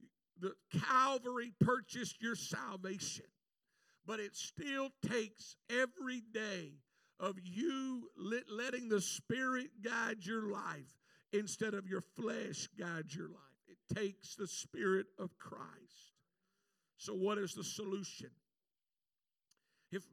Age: 50-69